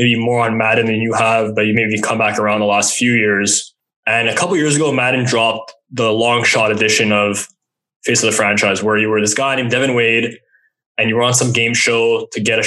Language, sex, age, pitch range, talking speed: English, male, 10-29, 110-130 Hz, 245 wpm